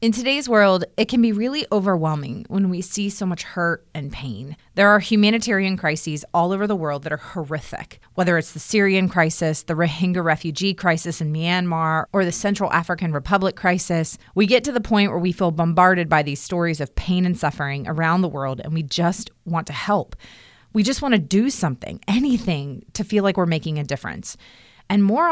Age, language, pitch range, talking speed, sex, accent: 30-49, English, 160-200 Hz, 200 wpm, female, American